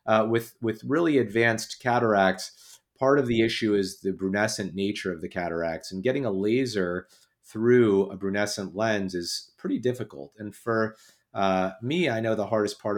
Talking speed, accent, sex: 170 wpm, American, male